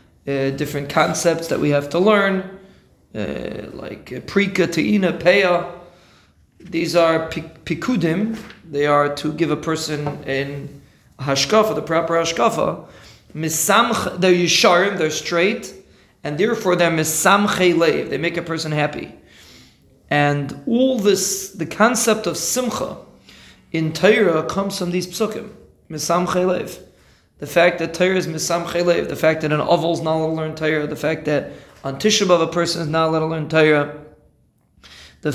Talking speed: 150 wpm